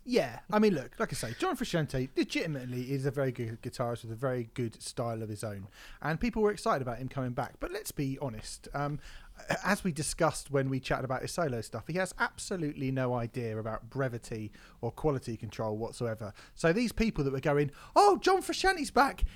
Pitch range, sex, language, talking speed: 125-200 Hz, male, English, 210 wpm